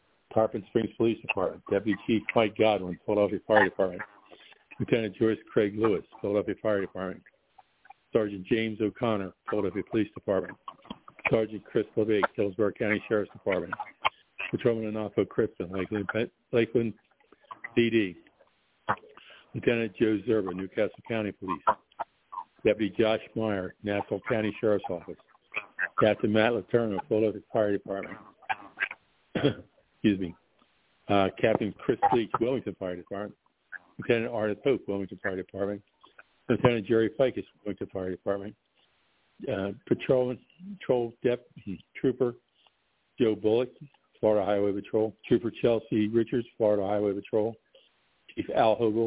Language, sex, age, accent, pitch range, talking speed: English, male, 50-69, American, 100-115 Hz, 120 wpm